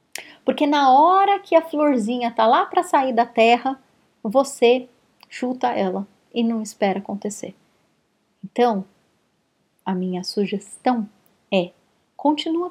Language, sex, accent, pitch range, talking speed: Portuguese, female, Brazilian, 210-300 Hz, 120 wpm